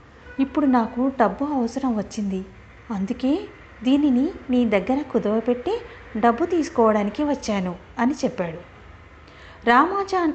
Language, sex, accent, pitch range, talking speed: Telugu, female, native, 205-295 Hz, 95 wpm